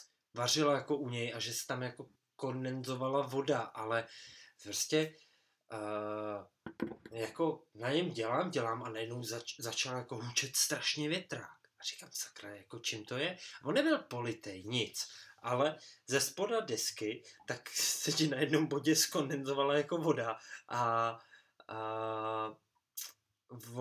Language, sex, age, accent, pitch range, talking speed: Czech, male, 20-39, native, 115-140 Hz, 130 wpm